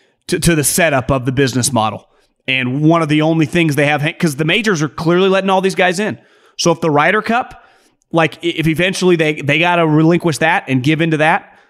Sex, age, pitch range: male, 30-49, 145-180 Hz